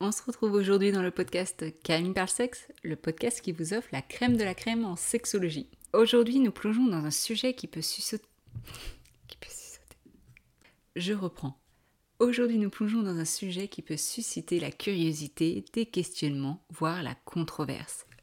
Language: French